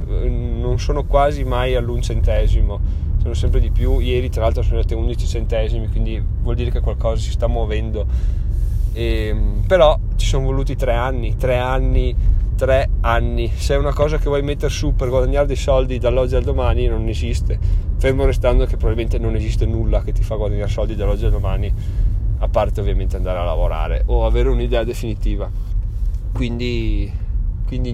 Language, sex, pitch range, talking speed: Italian, male, 90-120 Hz, 170 wpm